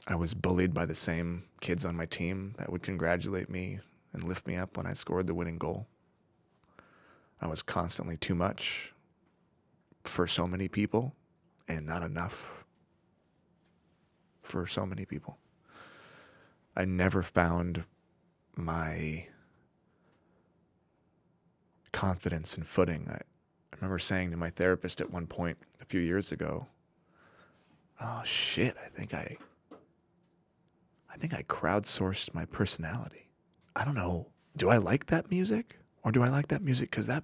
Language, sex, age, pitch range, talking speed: English, male, 20-39, 85-105 Hz, 140 wpm